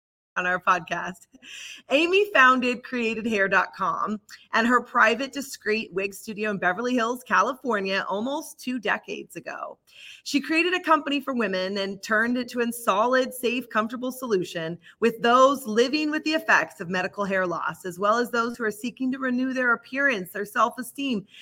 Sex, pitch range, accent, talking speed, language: female, 200-265 Hz, American, 165 wpm, English